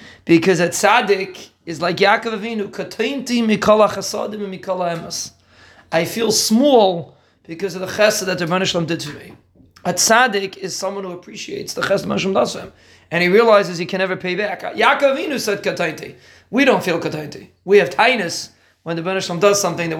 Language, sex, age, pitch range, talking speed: English, male, 30-49, 175-210 Hz, 175 wpm